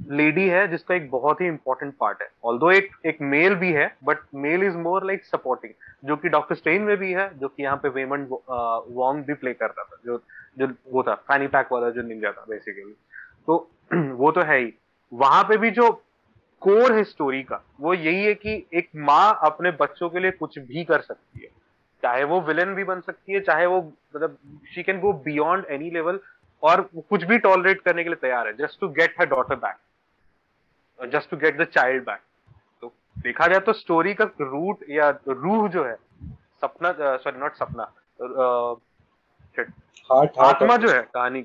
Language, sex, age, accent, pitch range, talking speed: Hindi, male, 30-49, native, 135-185 Hz, 185 wpm